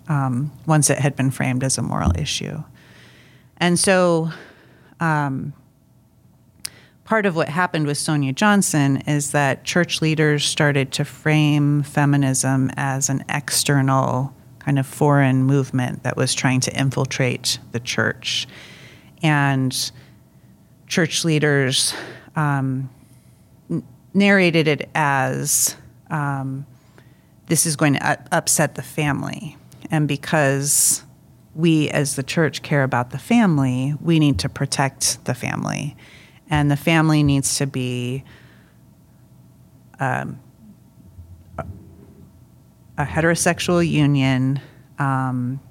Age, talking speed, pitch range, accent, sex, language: 30-49, 110 wpm, 130-150 Hz, American, female, English